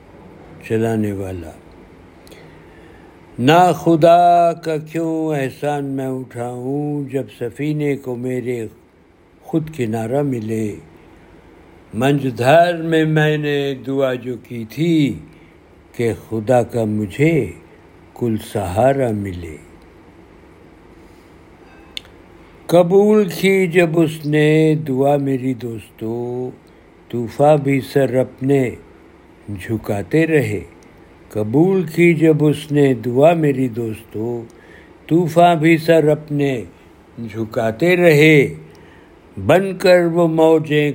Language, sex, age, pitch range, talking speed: Urdu, male, 60-79, 105-155 Hz, 95 wpm